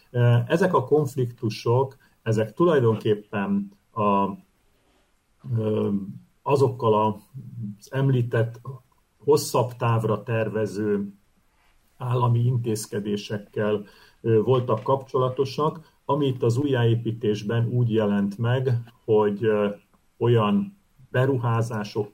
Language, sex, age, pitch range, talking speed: Hungarian, male, 50-69, 105-130 Hz, 70 wpm